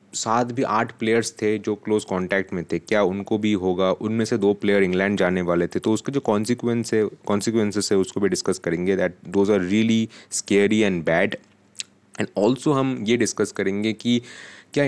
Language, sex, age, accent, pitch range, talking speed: Hindi, male, 30-49, native, 95-120 Hz, 200 wpm